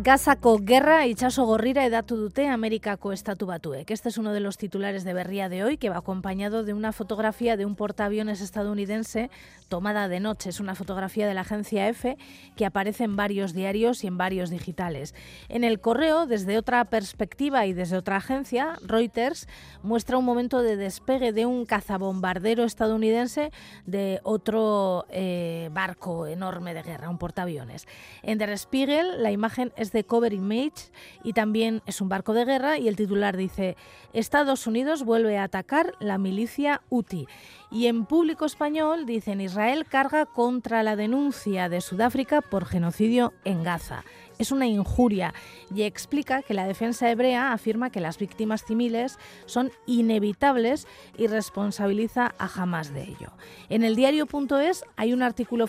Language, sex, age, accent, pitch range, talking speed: Spanish, female, 30-49, Spanish, 195-240 Hz, 160 wpm